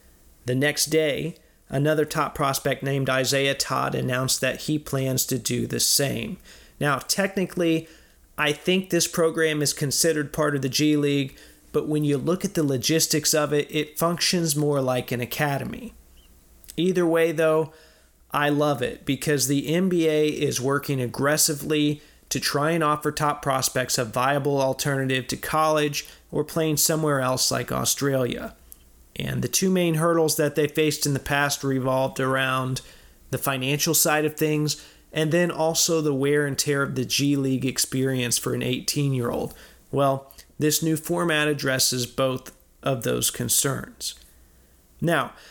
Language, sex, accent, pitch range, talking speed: English, male, American, 130-155 Hz, 155 wpm